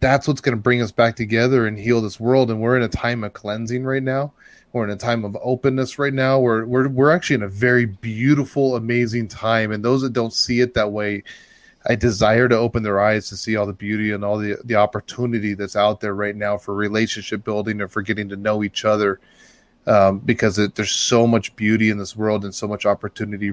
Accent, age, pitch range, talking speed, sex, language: American, 20-39, 105-120 Hz, 235 wpm, male, English